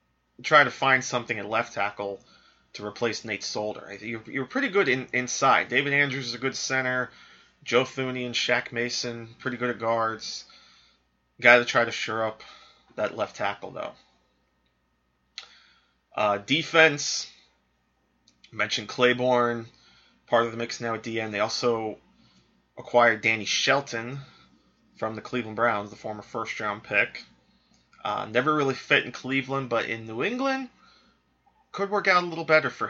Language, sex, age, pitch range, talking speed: English, male, 20-39, 110-130 Hz, 150 wpm